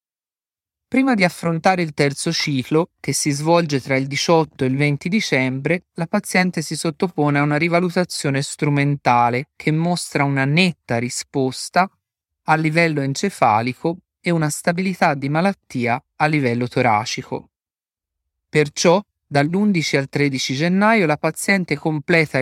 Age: 30-49